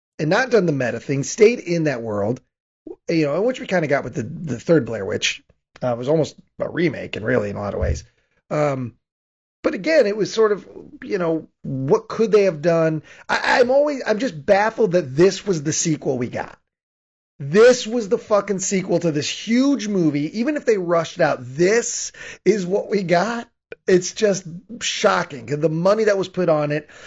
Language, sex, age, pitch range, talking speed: English, male, 30-49, 150-200 Hz, 205 wpm